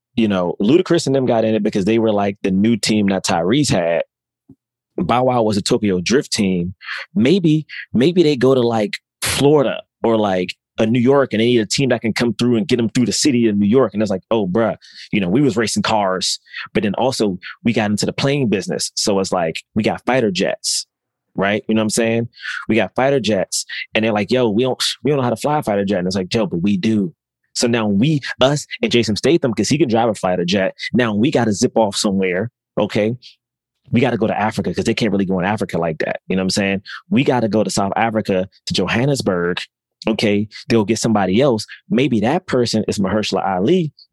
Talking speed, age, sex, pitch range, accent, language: 240 wpm, 20-39, male, 105-125 Hz, American, English